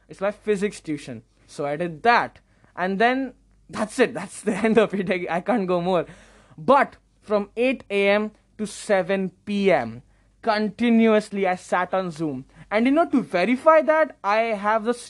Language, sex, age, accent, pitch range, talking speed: English, male, 20-39, Indian, 155-220 Hz, 165 wpm